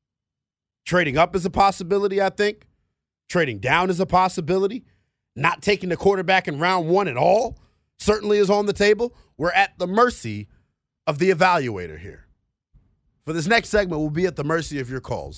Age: 30-49